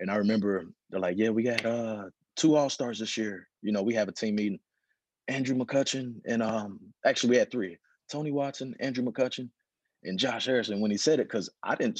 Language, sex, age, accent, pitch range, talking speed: English, male, 30-49, American, 100-125 Hz, 210 wpm